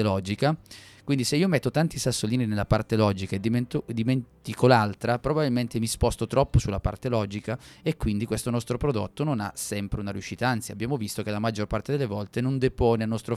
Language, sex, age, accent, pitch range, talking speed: Italian, male, 30-49, native, 105-125 Hz, 200 wpm